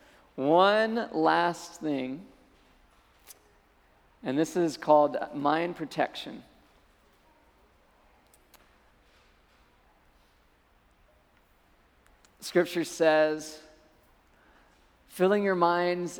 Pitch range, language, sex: 140-170 Hz, English, male